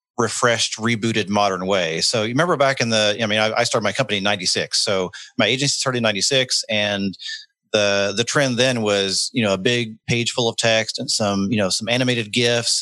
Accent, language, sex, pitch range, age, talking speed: American, English, male, 105-125 Hz, 40-59, 215 wpm